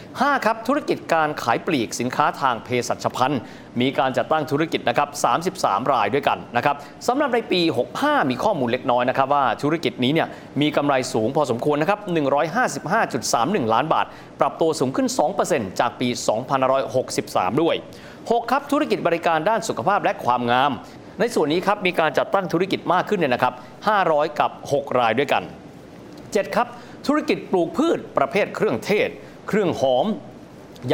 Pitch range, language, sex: 130-185 Hz, Thai, male